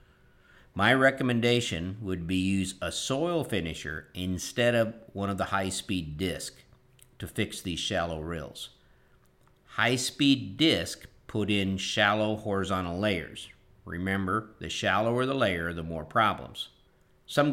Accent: American